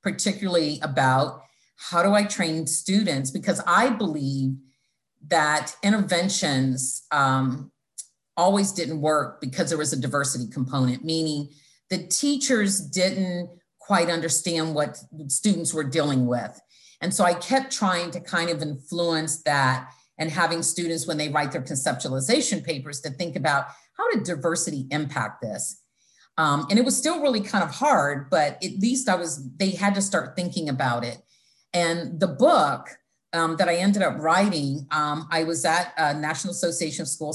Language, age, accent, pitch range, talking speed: English, 50-69, American, 140-185 Hz, 160 wpm